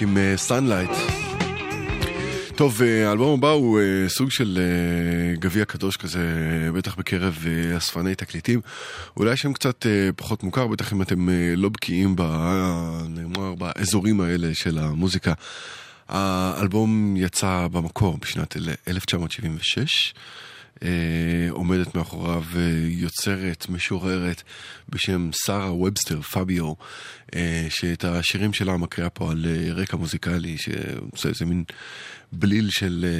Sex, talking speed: male, 100 wpm